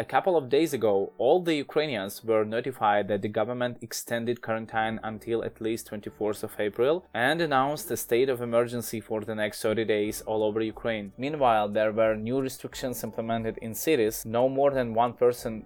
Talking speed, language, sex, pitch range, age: 185 wpm, English, male, 110-125 Hz, 20-39